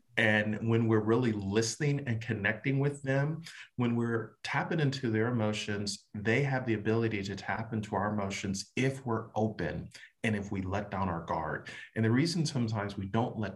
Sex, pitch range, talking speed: male, 105-135 Hz, 180 wpm